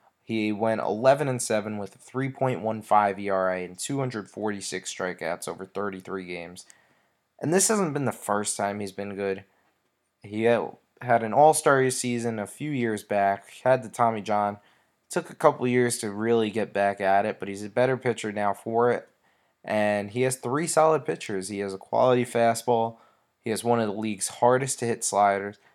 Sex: male